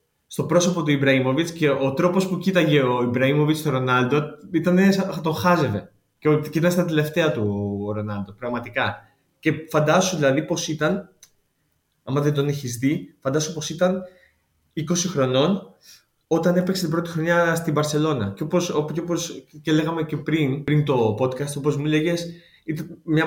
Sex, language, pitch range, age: male, Greek, 130-170 Hz, 20-39